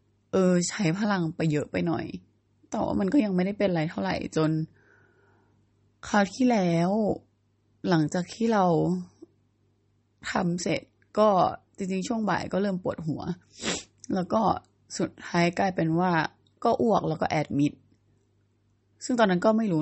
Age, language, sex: 20-39, Thai, female